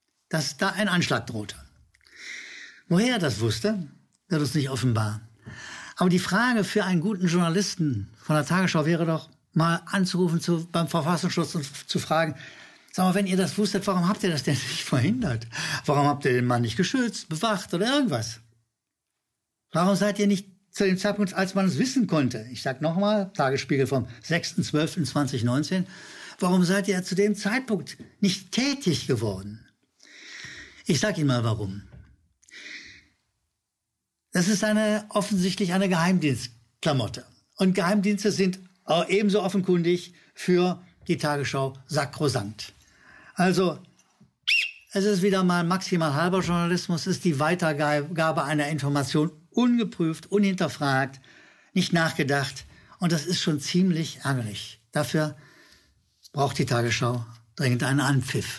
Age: 60-79